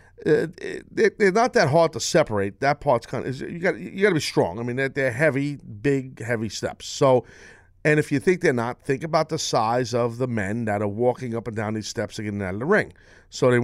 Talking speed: 255 wpm